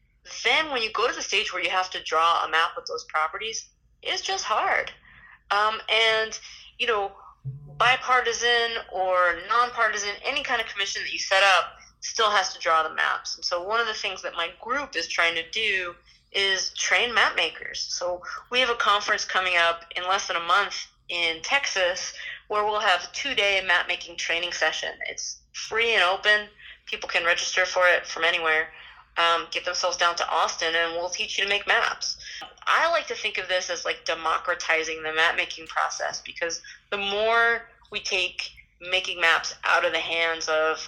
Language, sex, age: English, female, 30-49